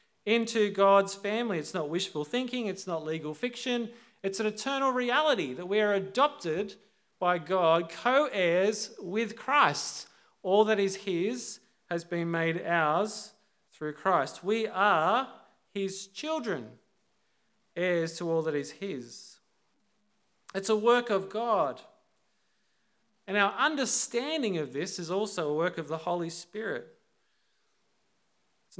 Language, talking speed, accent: English, 130 wpm, Australian